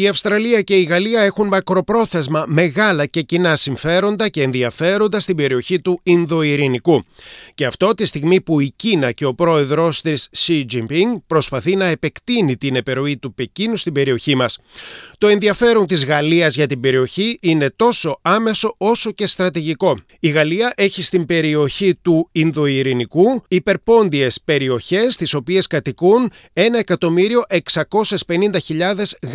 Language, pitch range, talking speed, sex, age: Greek, 145-195 Hz, 135 wpm, male, 30-49